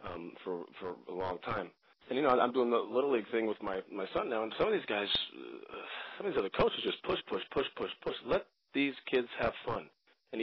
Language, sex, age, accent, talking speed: English, male, 30-49, American, 240 wpm